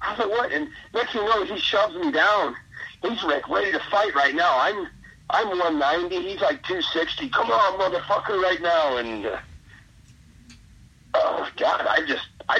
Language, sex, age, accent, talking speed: English, male, 50-69, American, 175 wpm